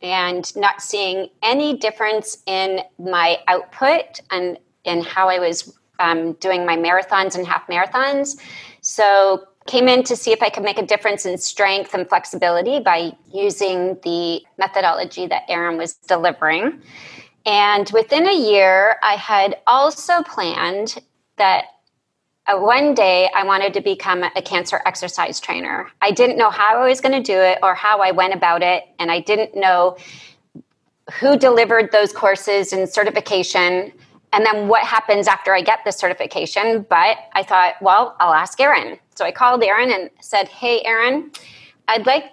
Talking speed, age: 165 wpm, 30-49